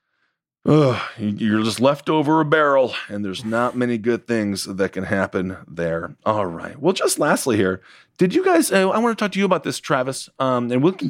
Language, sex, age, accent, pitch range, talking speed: English, male, 30-49, American, 105-130 Hz, 205 wpm